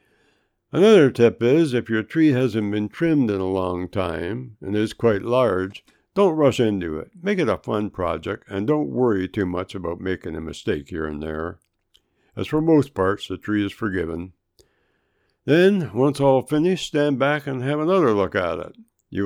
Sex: male